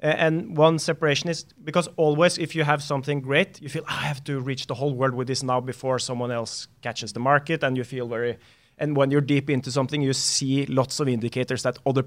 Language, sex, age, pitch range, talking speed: English, male, 30-49, 125-150 Hz, 235 wpm